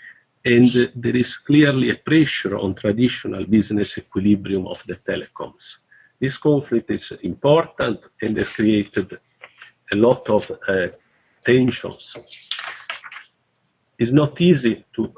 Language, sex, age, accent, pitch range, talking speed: English, male, 50-69, Italian, 105-130 Hz, 115 wpm